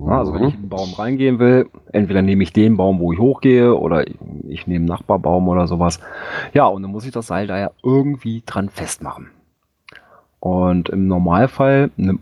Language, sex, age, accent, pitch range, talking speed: German, male, 30-49, German, 90-115 Hz, 190 wpm